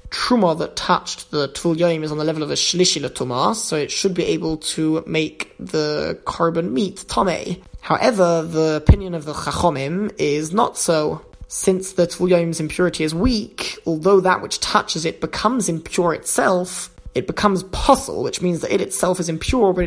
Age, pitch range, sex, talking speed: 20-39, 160-185 Hz, male, 175 wpm